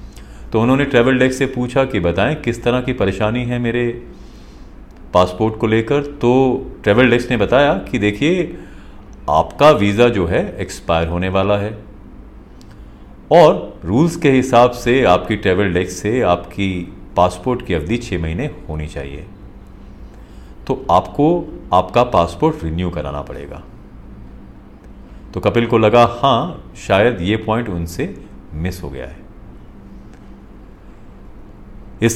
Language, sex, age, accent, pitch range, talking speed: Hindi, male, 40-59, native, 90-120 Hz, 130 wpm